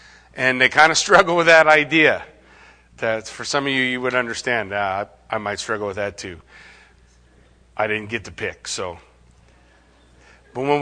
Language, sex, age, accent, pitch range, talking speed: English, male, 40-59, American, 130-180 Hz, 170 wpm